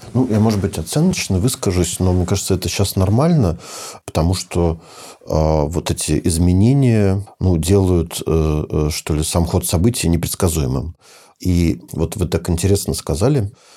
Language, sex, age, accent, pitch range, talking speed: Russian, male, 50-69, native, 80-100 Hz, 150 wpm